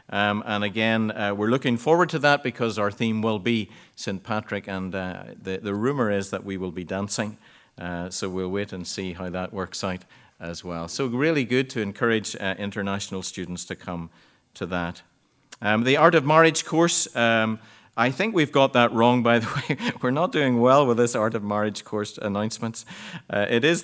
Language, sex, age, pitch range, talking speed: English, male, 50-69, 95-125 Hz, 205 wpm